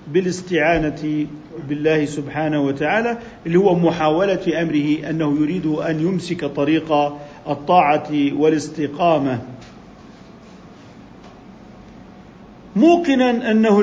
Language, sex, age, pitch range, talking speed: Arabic, male, 50-69, 155-225 Hz, 75 wpm